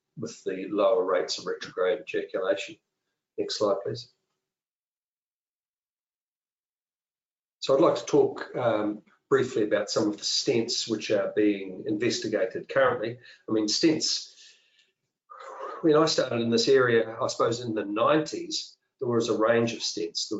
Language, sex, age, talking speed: English, male, 50-69, 140 wpm